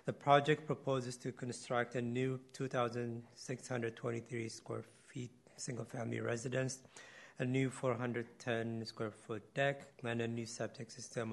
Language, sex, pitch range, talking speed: English, male, 115-130 Hz, 125 wpm